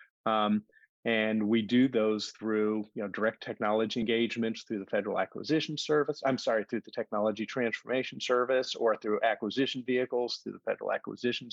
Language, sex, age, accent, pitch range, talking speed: English, male, 40-59, American, 105-120 Hz, 160 wpm